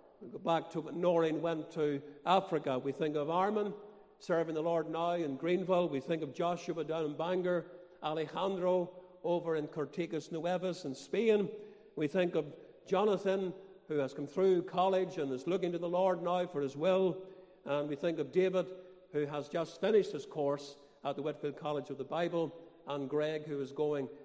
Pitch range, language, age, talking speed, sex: 150-185 Hz, English, 50-69, 190 wpm, male